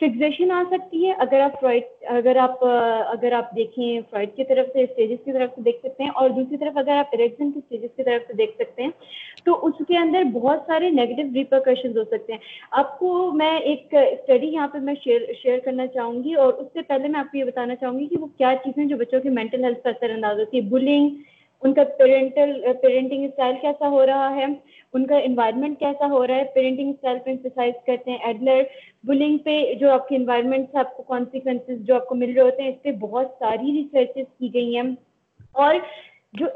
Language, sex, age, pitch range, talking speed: Urdu, female, 20-39, 250-295 Hz, 185 wpm